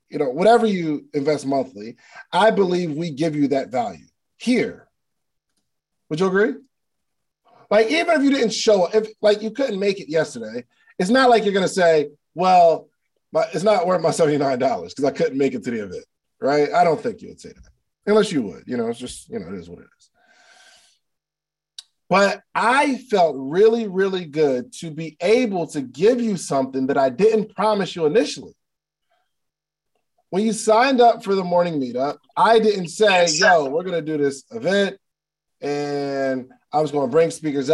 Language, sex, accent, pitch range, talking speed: English, male, American, 150-220 Hz, 190 wpm